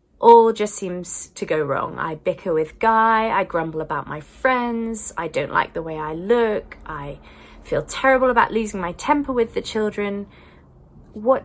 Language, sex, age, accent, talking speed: English, female, 30-49, British, 175 wpm